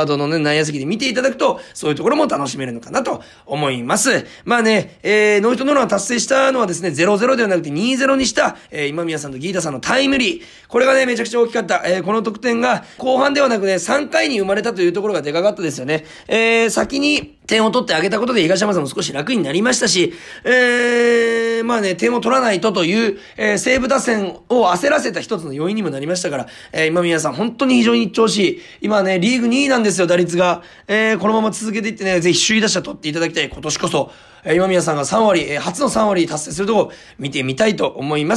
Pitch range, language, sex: 180-245 Hz, Japanese, male